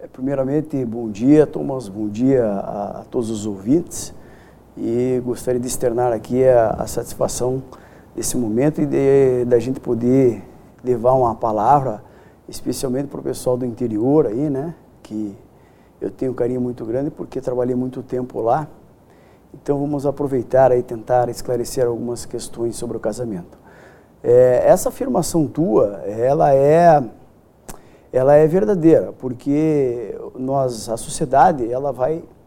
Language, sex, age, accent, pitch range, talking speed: Portuguese, male, 50-69, Brazilian, 125-155 Hz, 135 wpm